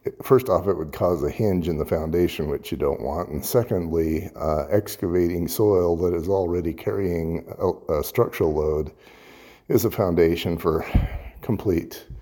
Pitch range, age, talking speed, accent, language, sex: 85-95 Hz, 50-69, 155 wpm, American, English, male